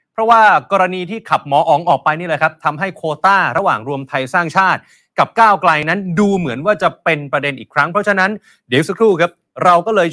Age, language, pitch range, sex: 30-49, Thai, 140-185 Hz, male